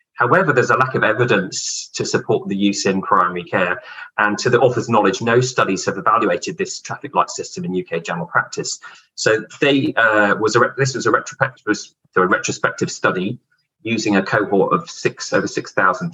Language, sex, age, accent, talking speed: English, male, 30-49, British, 185 wpm